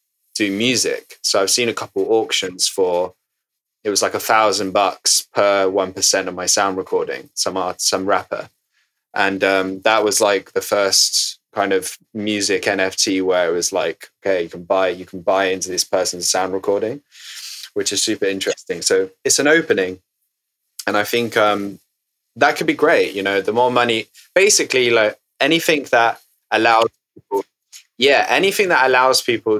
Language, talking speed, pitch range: English, 170 wpm, 100-150 Hz